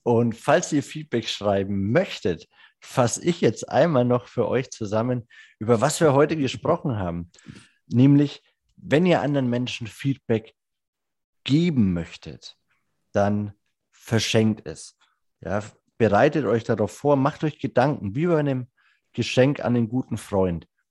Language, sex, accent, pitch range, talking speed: German, male, German, 105-140 Hz, 135 wpm